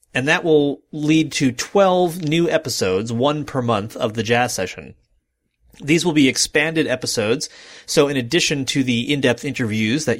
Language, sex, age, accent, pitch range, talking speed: English, male, 30-49, American, 115-155 Hz, 165 wpm